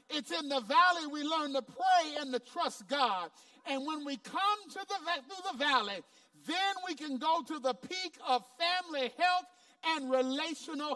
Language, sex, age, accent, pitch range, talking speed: English, male, 50-69, American, 255-355 Hz, 180 wpm